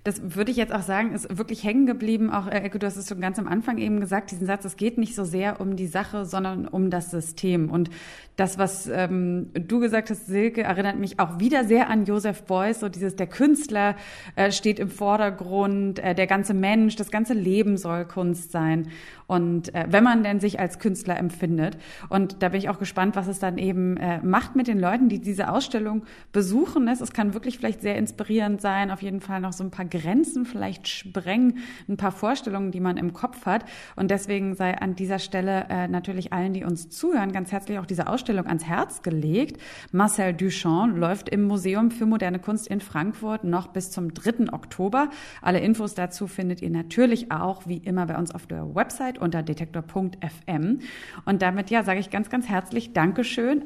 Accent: German